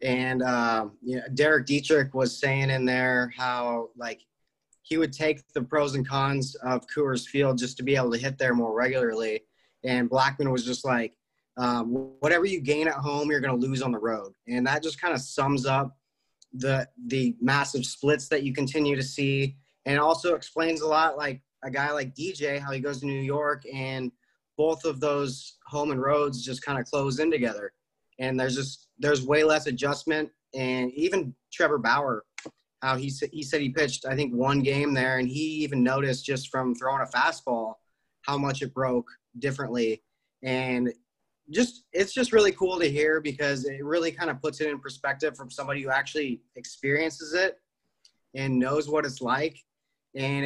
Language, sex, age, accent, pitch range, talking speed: English, male, 20-39, American, 130-150 Hz, 190 wpm